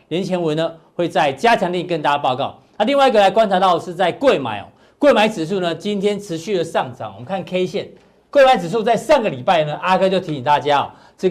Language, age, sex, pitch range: Chinese, 50-69, male, 165-210 Hz